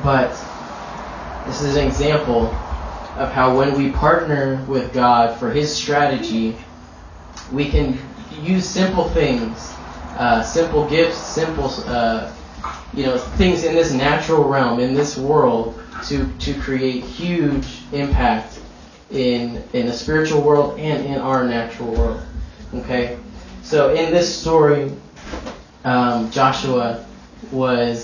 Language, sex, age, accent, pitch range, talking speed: English, male, 10-29, American, 120-150 Hz, 125 wpm